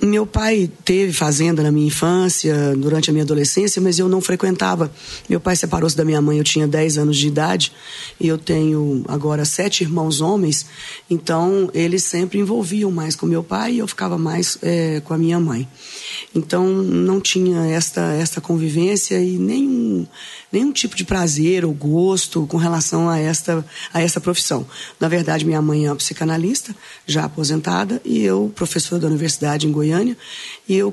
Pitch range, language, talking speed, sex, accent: 155-195 Hz, Portuguese, 175 wpm, female, Brazilian